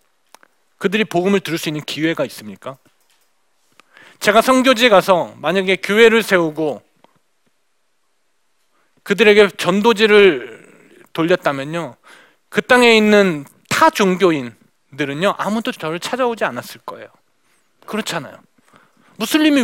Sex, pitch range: male, 180-270 Hz